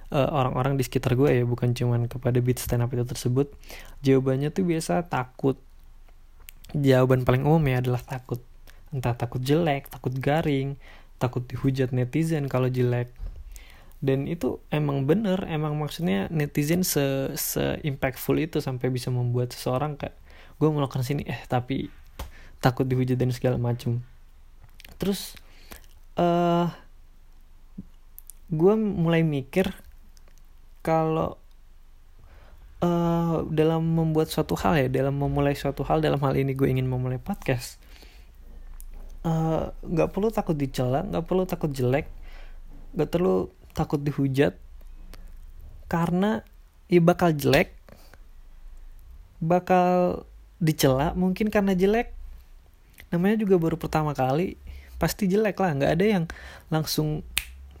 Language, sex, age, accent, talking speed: Indonesian, male, 20-39, native, 120 wpm